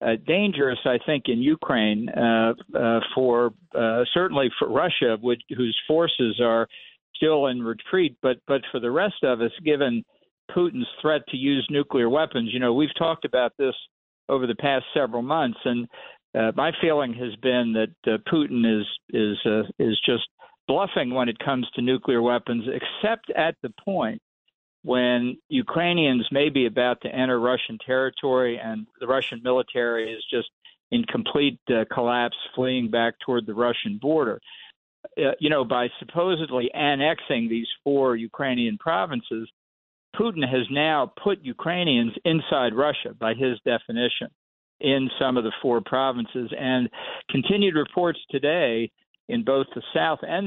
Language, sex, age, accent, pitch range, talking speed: English, male, 60-79, American, 120-150 Hz, 155 wpm